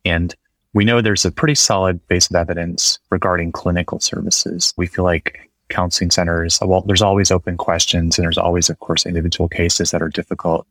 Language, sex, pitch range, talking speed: English, male, 85-95 Hz, 185 wpm